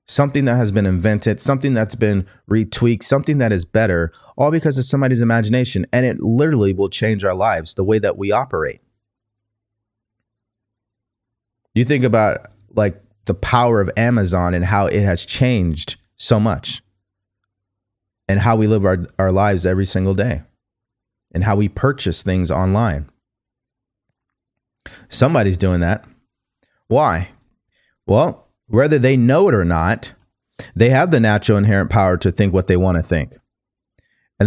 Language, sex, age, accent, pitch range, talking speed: English, male, 30-49, American, 95-120 Hz, 150 wpm